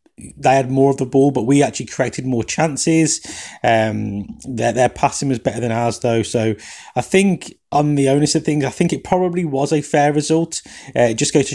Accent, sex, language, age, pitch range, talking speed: British, male, English, 20-39, 115-150 Hz, 220 wpm